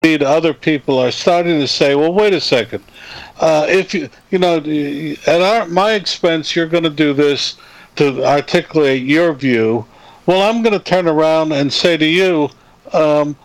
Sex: male